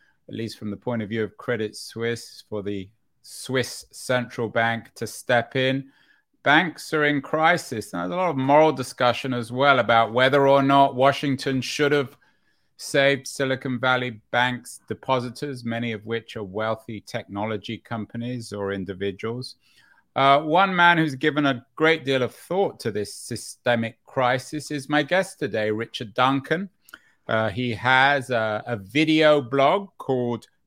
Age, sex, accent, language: 30-49, male, British, English